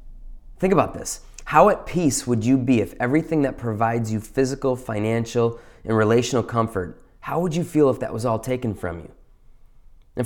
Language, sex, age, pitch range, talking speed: English, male, 20-39, 110-140 Hz, 180 wpm